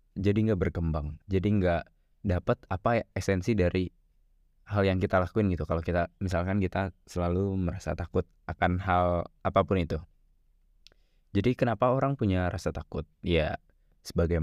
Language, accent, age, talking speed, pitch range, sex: Indonesian, native, 20-39, 135 wpm, 85-100 Hz, male